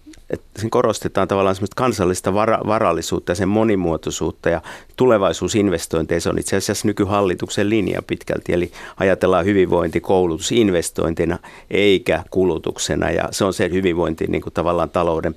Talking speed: 135 wpm